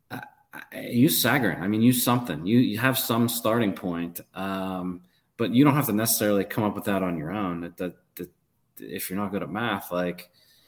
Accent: American